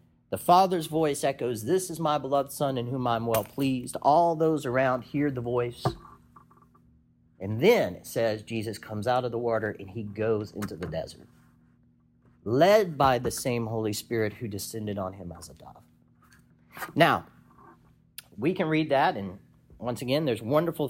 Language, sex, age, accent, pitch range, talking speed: English, male, 40-59, American, 105-155 Hz, 170 wpm